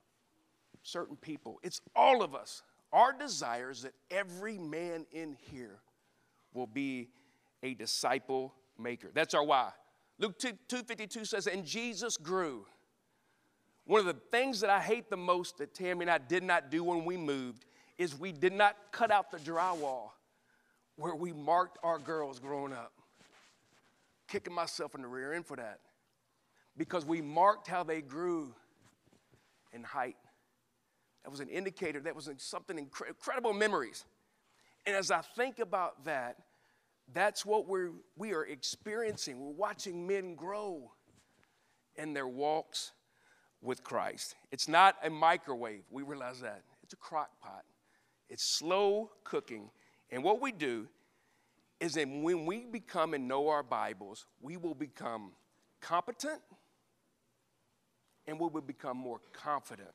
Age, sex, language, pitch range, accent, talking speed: 50-69, male, English, 145-200 Hz, American, 145 wpm